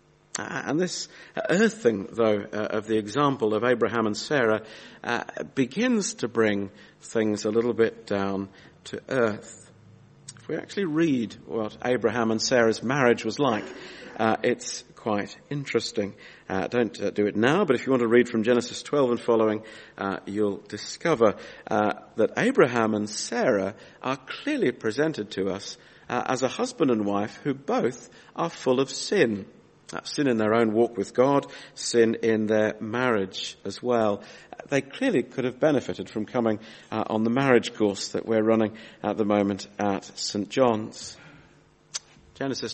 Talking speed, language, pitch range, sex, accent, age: 165 wpm, English, 105-135 Hz, male, British, 50-69